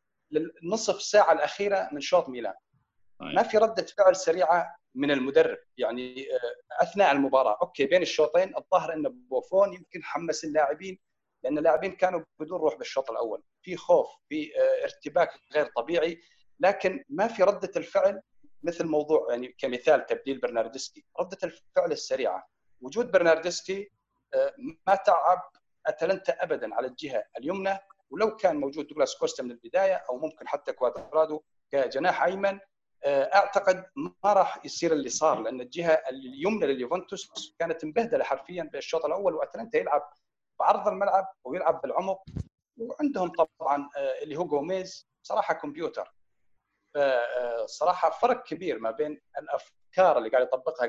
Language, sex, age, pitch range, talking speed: Arabic, male, 40-59, 150-245 Hz, 130 wpm